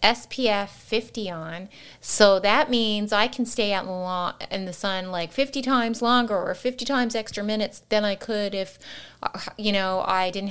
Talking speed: 170 wpm